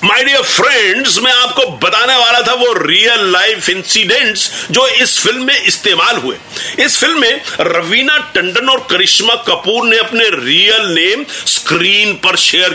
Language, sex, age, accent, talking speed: Hindi, male, 50-69, native, 135 wpm